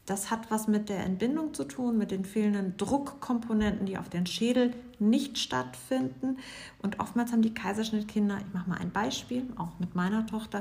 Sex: female